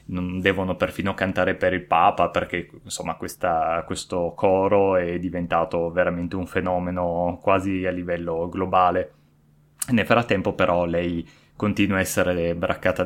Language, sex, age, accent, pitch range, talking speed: Italian, male, 20-39, native, 85-100 Hz, 135 wpm